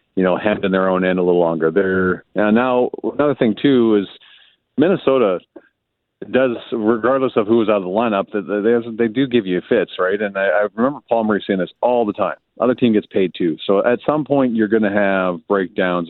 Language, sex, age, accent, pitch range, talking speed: English, male, 40-59, American, 95-115 Hz, 225 wpm